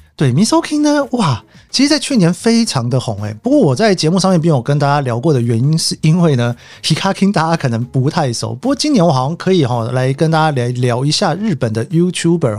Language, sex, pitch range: Chinese, male, 130-210 Hz